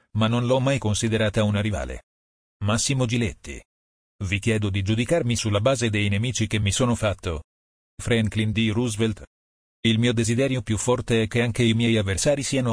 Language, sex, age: Italian, male, 40-59